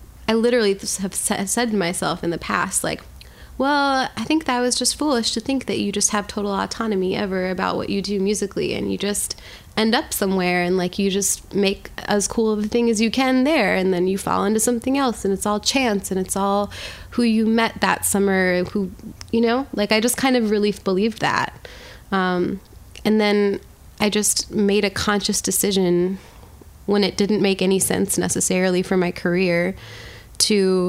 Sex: female